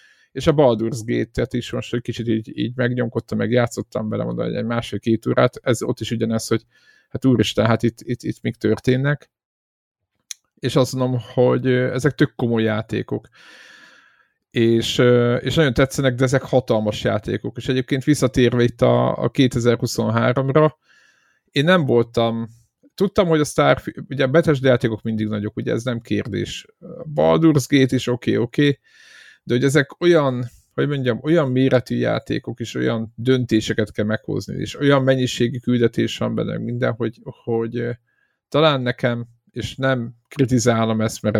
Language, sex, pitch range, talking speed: Hungarian, male, 110-135 Hz, 150 wpm